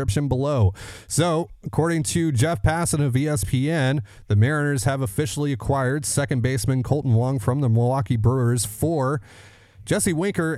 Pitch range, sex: 105-135 Hz, male